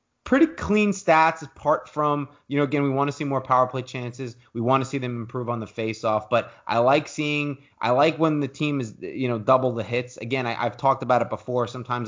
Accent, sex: American, male